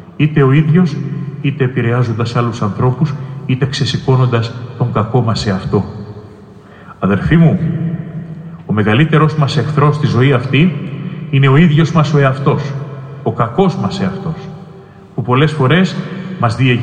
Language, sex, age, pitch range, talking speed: Greek, male, 40-59, 130-160 Hz, 130 wpm